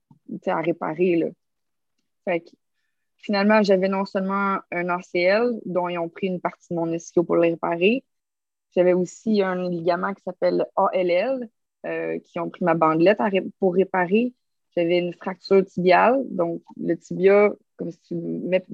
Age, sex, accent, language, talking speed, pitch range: 20-39, female, Canadian, French, 165 wpm, 175-210 Hz